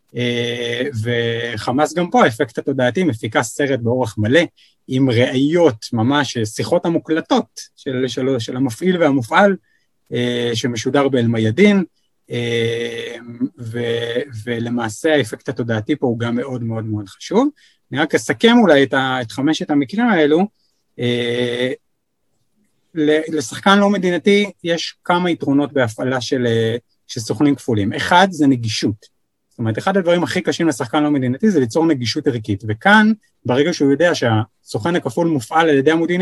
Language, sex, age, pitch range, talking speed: Hebrew, male, 30-49, 120-160 Hz, 140 wpm